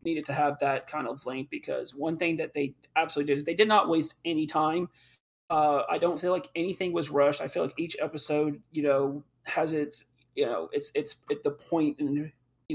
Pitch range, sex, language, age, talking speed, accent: 140-165 Hz, male, English, 30-49, 220 wpm, American